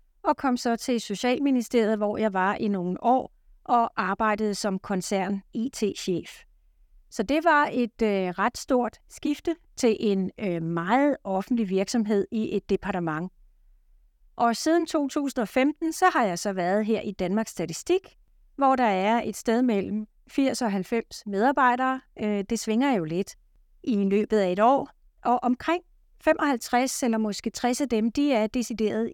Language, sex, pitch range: Danish, female, 195-250 Hz